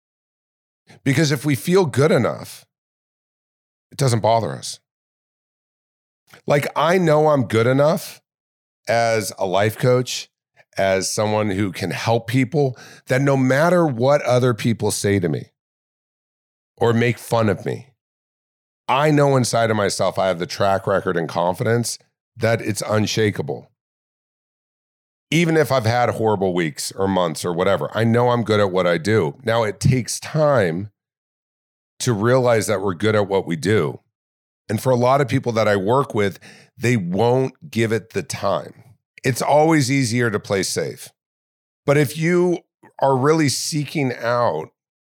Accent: American